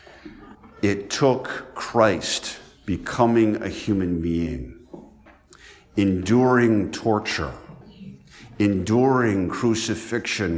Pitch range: 80-100 Hz